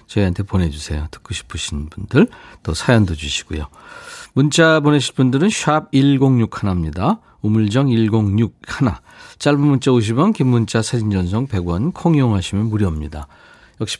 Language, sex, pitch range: Korean, male, 95-145 Hz